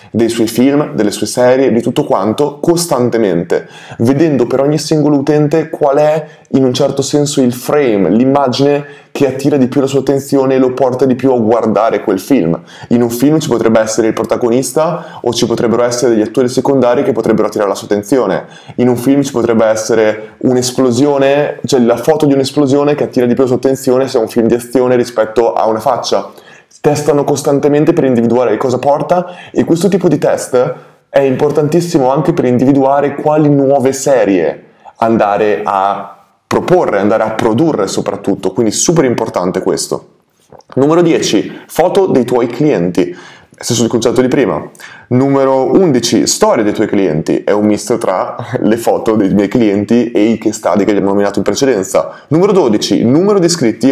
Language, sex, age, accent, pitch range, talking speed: Italian, male, 20-39, native, 115-145 Hz, 180 wpm